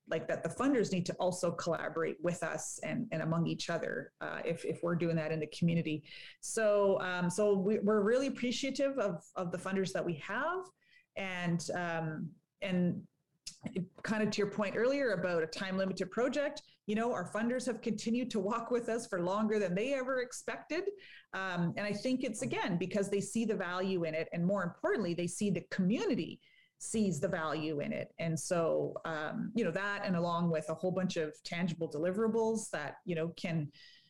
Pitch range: 165-215 Hz